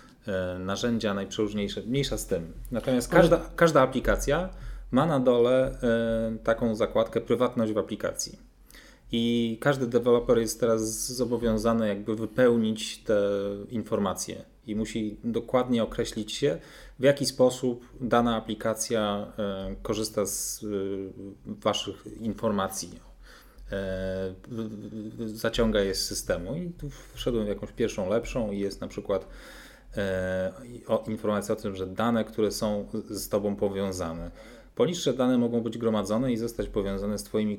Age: 30-49